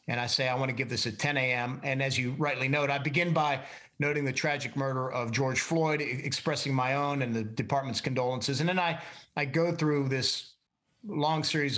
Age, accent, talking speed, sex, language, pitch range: 40-59, American, 215 wpm, male, English, 130-155 Hz